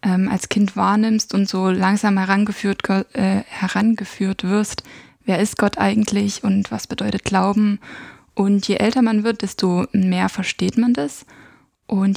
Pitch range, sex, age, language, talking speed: 195-215 Hz, female, 20-39, German, 145 wpm